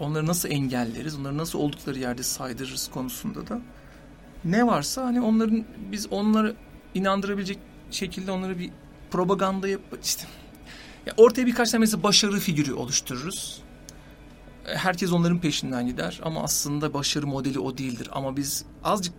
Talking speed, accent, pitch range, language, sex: 140 wpm, native, 140-185 Hz, Turkish, male